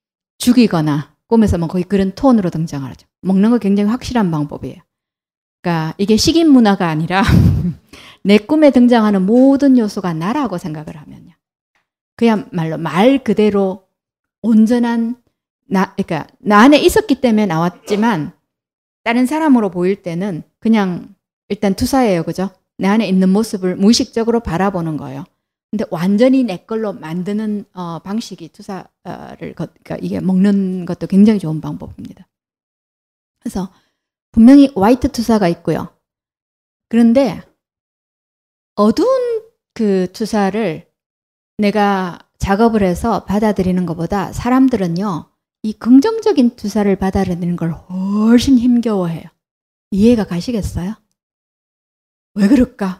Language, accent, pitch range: Korean, native, 185-235 Hz